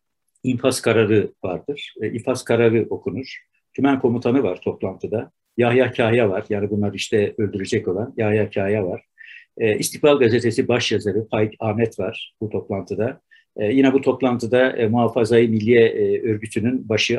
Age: 60-79